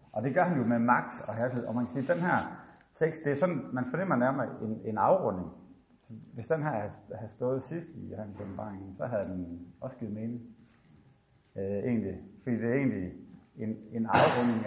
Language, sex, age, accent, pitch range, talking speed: Danish, male, 60-79, native, 100-120 Hz, 200 wpm